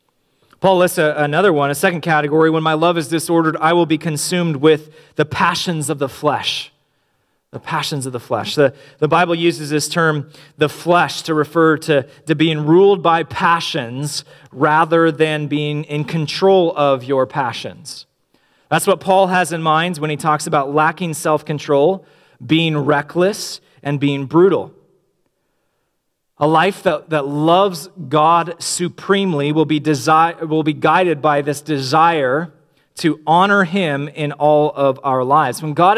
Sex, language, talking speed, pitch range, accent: male, English, 155 wpm, 150-180 Hz, American